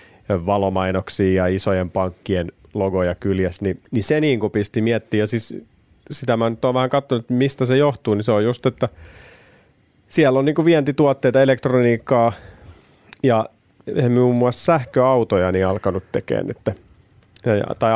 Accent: native